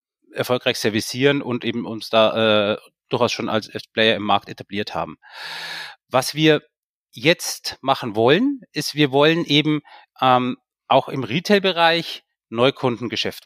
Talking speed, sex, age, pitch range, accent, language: 130 wpm, male, 30-49, 130-160 Hz, German, German